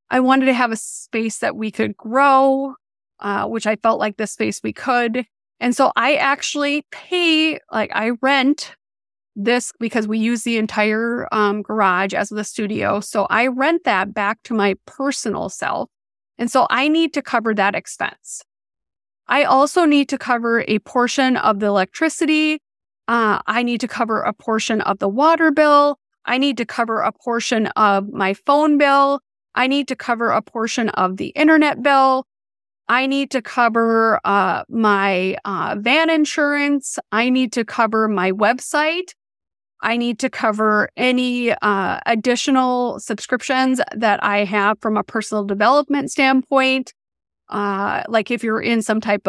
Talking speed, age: 165 wpm, 30-49